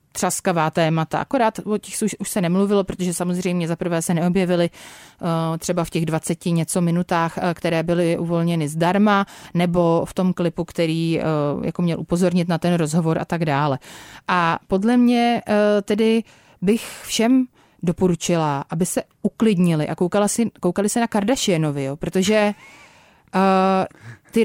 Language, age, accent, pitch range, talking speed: Czech, 30-49, native, 175-220 Hz, 155 wpm